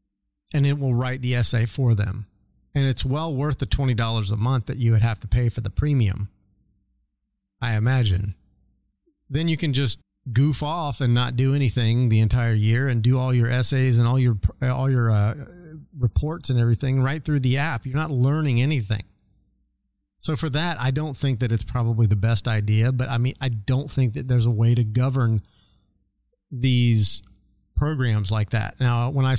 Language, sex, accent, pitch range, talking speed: English, male, American, 110-135 Hz, 190 wpm